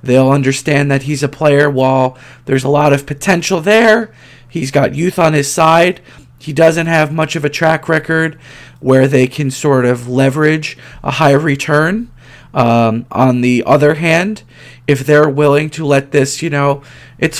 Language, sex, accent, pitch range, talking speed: English, male, American, 130-160 Hz, 170 wpm